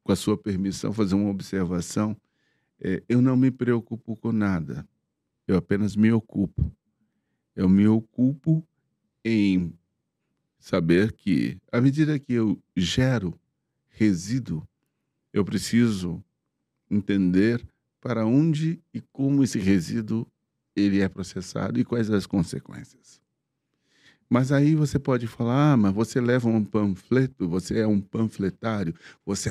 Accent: Brazilian